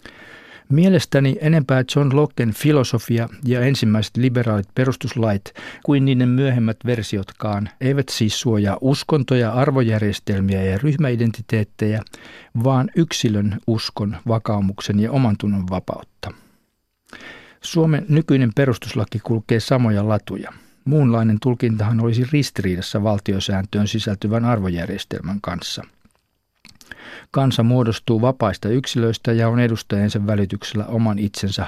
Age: 50-69